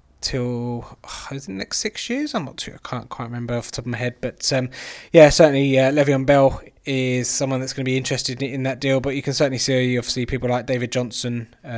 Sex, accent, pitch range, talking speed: male, British, 115-135 Hz, 255 wpm